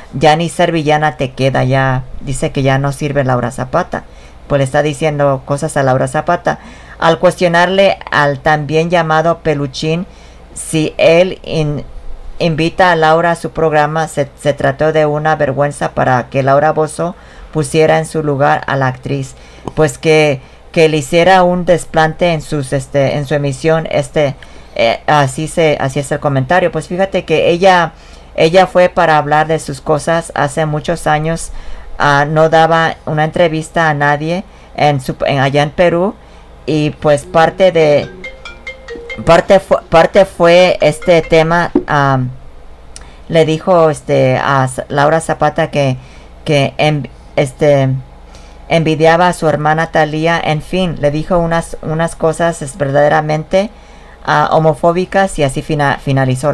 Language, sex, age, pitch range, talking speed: English, female, 40-59, 140-165 Hz, 140 wpm